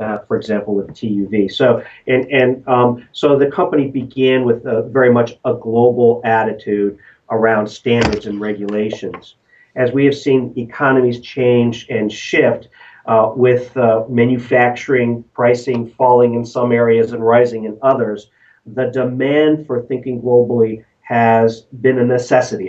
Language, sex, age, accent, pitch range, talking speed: English, male, 40-59, American, 115-130 Hz, 145 wpm